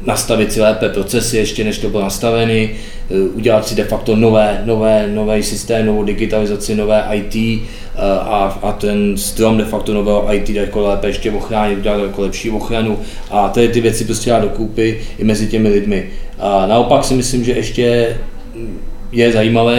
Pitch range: 105-115 Hz